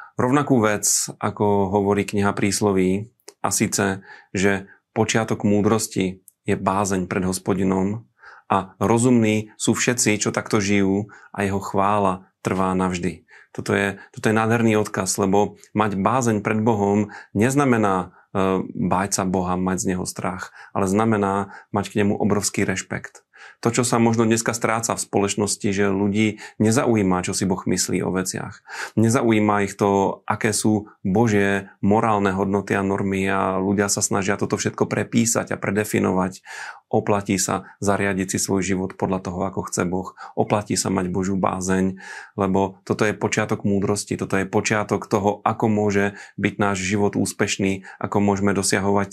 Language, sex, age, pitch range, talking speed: Slovak, male, 30-49, 95-110 Hz, 150 wpm